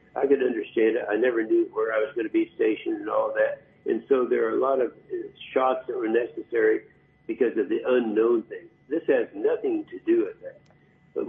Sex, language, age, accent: male, English, 60-79, American